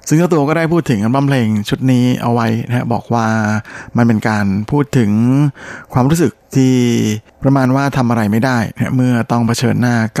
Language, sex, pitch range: Thai, male, 110-130 Hz